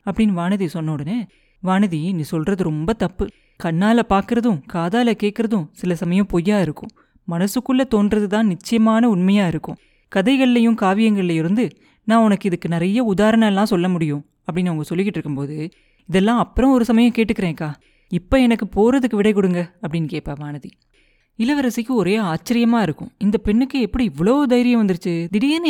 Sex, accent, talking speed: female, native, 140 wpm